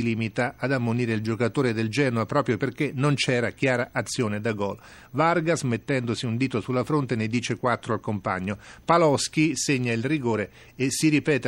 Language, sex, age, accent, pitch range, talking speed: Italian, male, 40-59, native, 115-140 Hz, 175 wpm